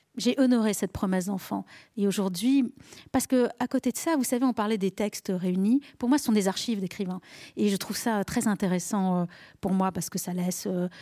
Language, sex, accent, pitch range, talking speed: French, female, French, 190-245 Hz, 205 wpm